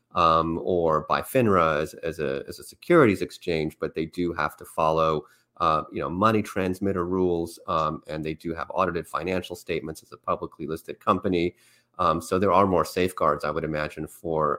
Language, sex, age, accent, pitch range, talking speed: English, male, 30-49, American, 85-110 Hz, 190 wpm